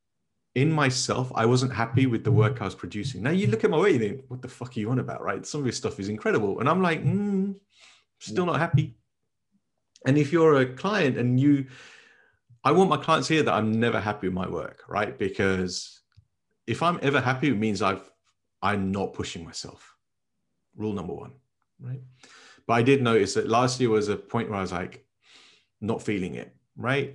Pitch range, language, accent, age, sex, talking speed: 105-135 Hz, English, British, 40-59, male, 210 wpm